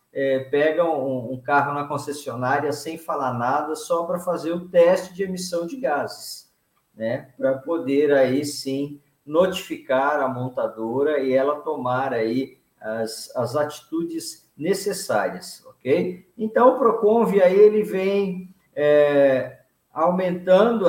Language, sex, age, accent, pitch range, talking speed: Portuguese, male, 50-69, Brazilian, 130-195 Hz, 120 wpm